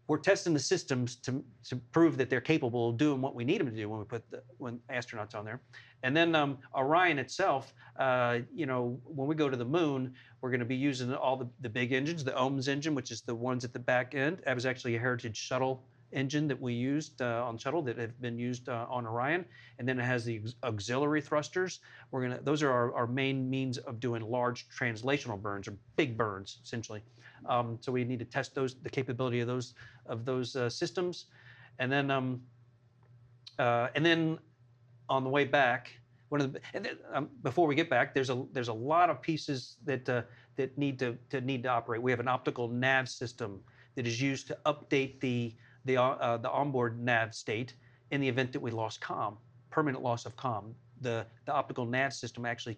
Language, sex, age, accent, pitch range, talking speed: English, male, 40-59, American, 120-135 Hz, 220 wpm